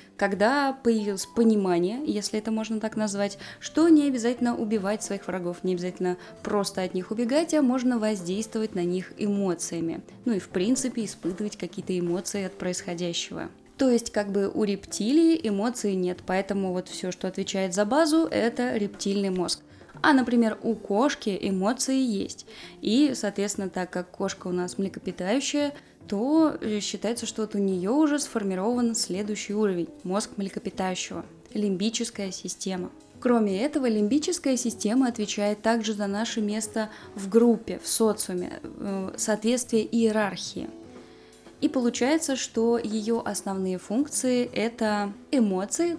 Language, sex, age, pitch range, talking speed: Russian, female, 20-39, 190-240 Hz, 140 wpm